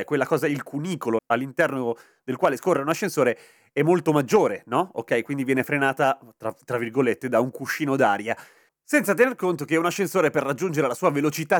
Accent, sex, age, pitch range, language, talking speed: native, male, 30-49, 130-175 Hz, Italian, 185 wpm